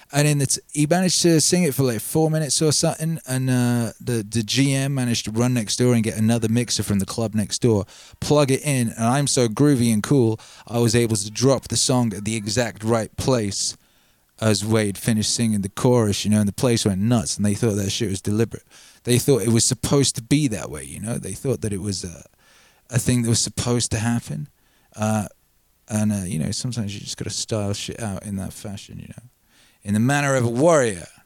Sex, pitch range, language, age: male, 105-130 Hz, English, 20-39